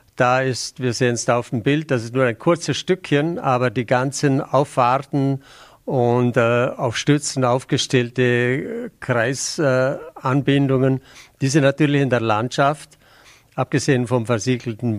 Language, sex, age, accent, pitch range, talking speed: German, male, 50-69, German, 120-140 Hz, 135 wpm